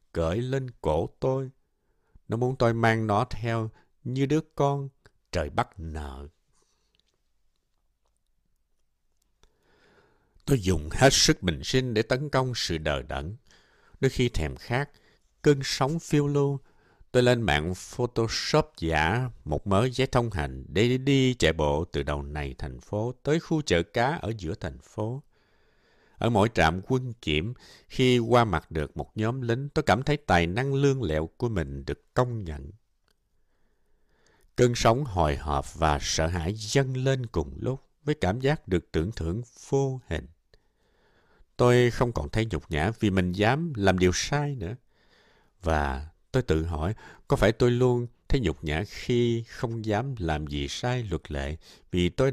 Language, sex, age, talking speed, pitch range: Vietnamese, male, 60-79, 160 wpm, 80-130 Hz